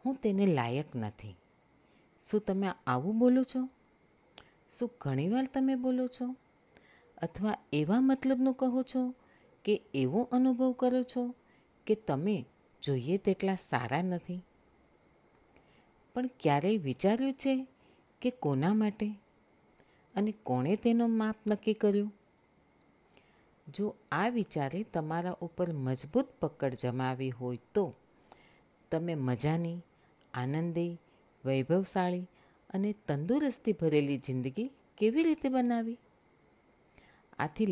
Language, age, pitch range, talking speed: Gujarati, 50-69, 145-220 Hz, 85 wpm